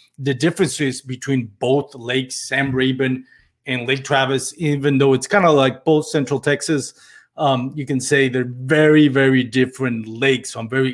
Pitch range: 120-135 Hz